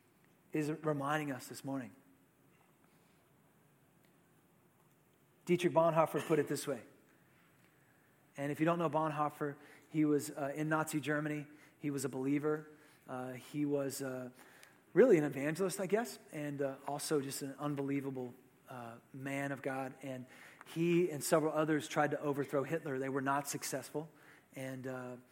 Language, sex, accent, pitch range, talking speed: English, male, American, 135-155 Hz, 140 wpm